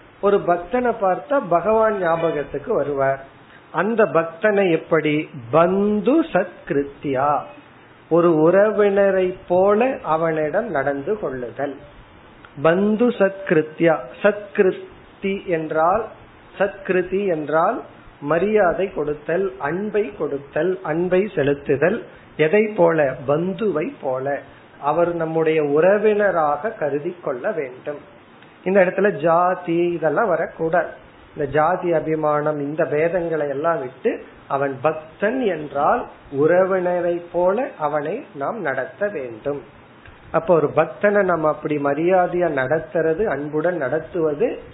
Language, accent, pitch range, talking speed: Tamil, native, 150-190 Hz, 65 wpm